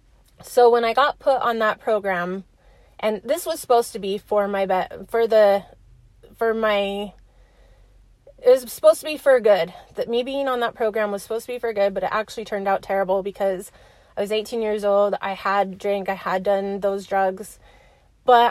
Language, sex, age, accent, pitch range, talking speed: English, female, 20-39, American, 195-230 Hz, 200 wpm